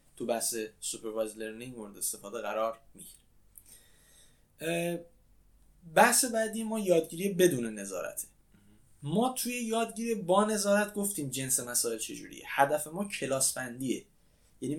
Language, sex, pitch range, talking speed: Persian, male, 130-185 Hz, 105 wpm